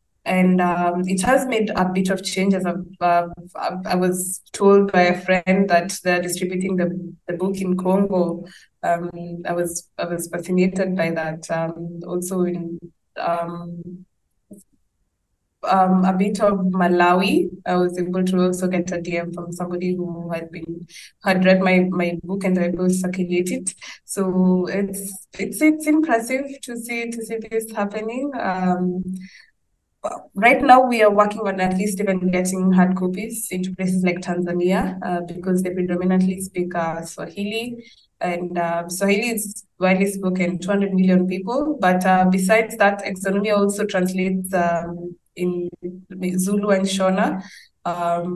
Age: 20-39